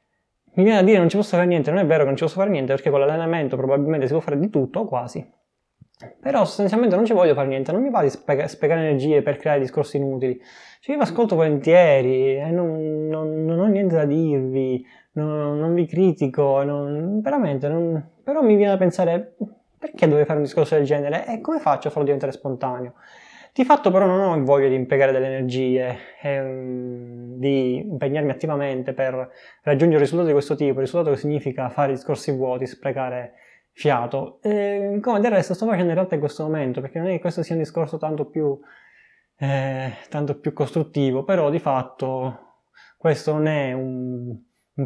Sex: male